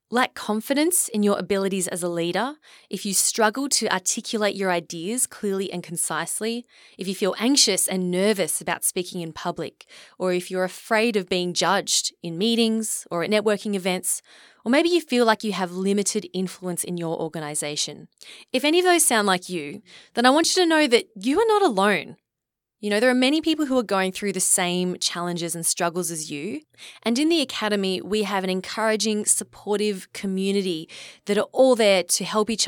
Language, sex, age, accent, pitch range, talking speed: English, female, 20-39, Australian, 180-220 Hz, 195 wpm